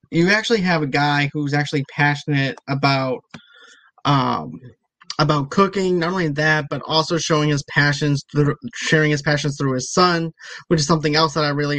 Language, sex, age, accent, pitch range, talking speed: English, male, 20-39, American, 145-165 Hz, 175 wpm